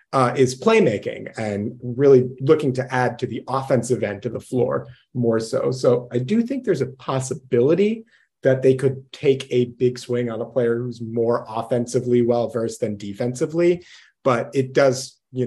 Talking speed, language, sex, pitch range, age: 170 wpm, English, male, 125-165 Hz, 30-49